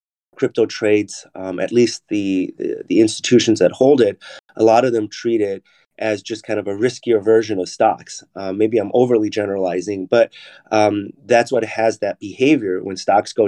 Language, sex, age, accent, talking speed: English, male, 30-49, American, 185 wpm